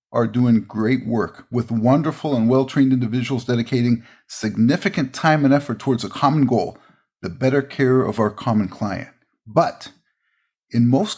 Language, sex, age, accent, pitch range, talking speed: English, male, 50-69, American, 120-150 Hz, 150 wpm